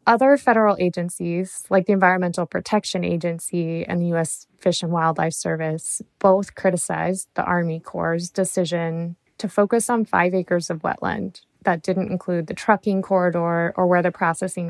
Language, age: English, 20-39